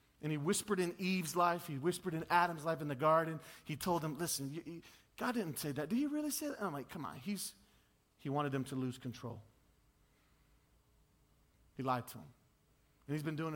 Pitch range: 145-200 Hz